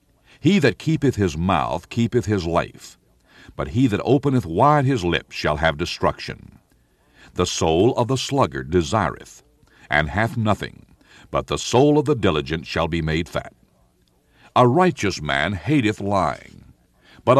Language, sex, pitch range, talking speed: English, male, 85-120 Hz, 150 wpm